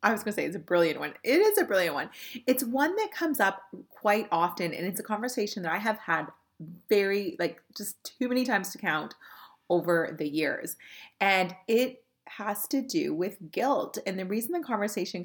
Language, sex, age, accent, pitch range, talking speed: English, female, 30-49, American, 175-225 Hz, 200 wpm